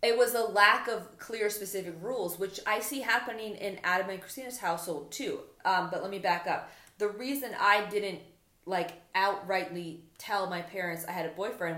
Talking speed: 190 wpm